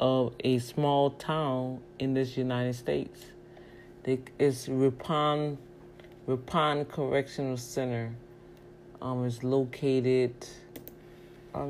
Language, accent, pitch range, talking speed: English, American, 125-150 Hz, 85 wpm